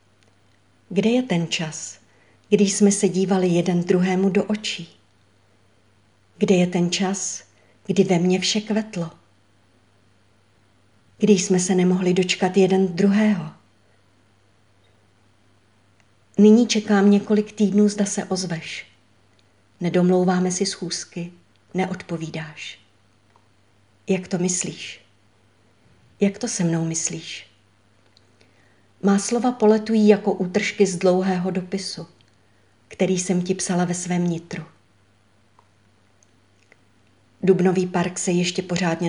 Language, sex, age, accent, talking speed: Czech, female, 50-69, native, 105 wpm